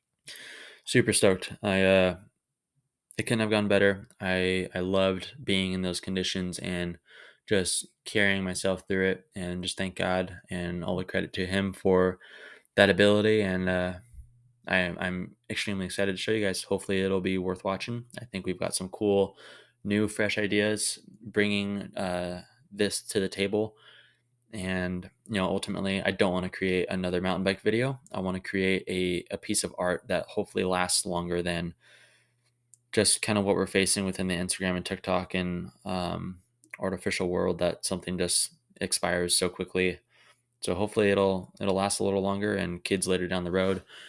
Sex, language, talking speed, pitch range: male, English, 170 wpm, 90-100 Hz